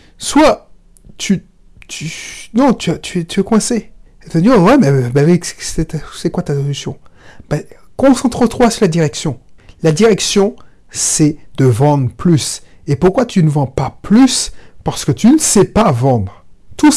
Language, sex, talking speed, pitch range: French, male, 165 wpm, 145-220 Hz